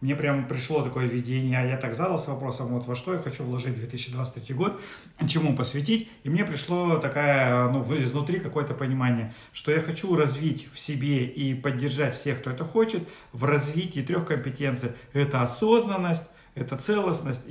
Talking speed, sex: 160 wpm, male